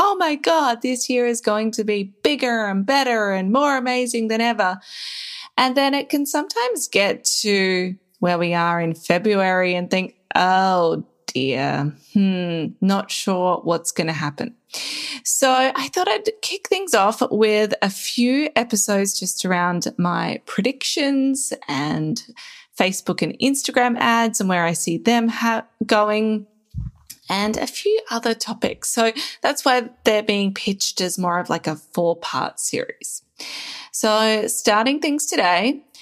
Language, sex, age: English, female, 20-39